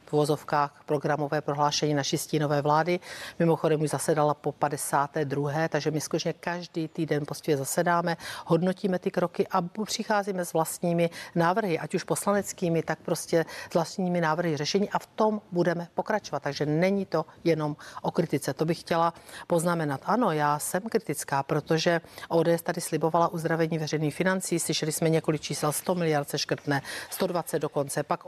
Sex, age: female, 50-69